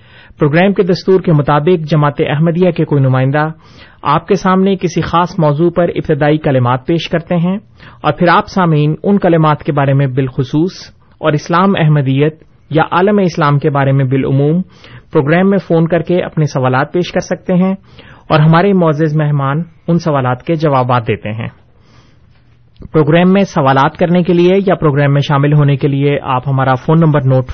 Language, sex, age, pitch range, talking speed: Urdu, male, 30-49, 140-175 Hz, 175 wpm